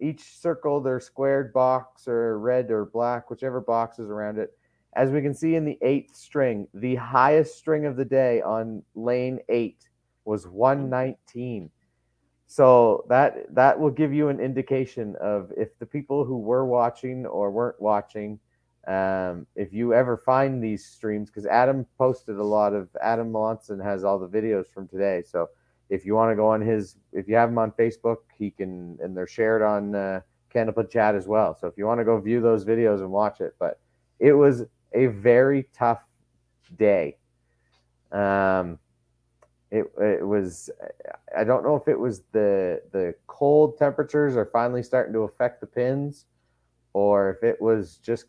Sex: male